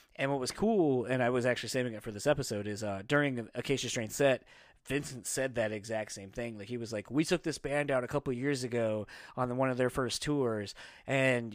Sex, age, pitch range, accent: male, 30-49, 120-140 Hz, American